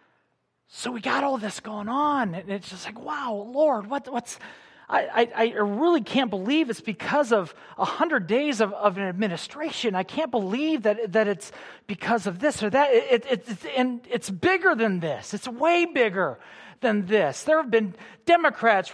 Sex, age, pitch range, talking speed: male, 40-59, 195-280 Hz, 185 wpm